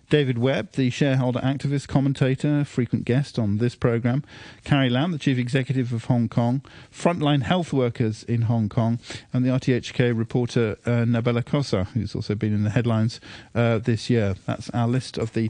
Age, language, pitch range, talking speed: 50-69, English, 115-140 Hz, 180 wpm